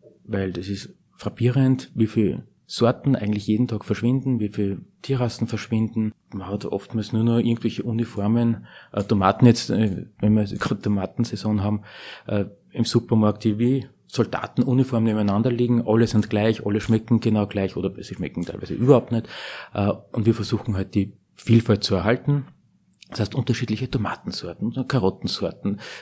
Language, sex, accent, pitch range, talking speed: German, male, Austrian, 100-120 Hz, 145 wpm